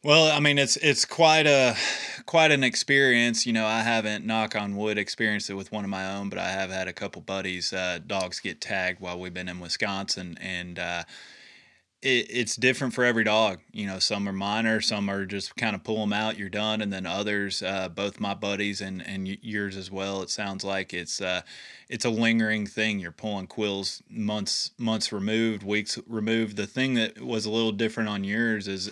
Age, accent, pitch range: 20-39, American, 100-115 Hz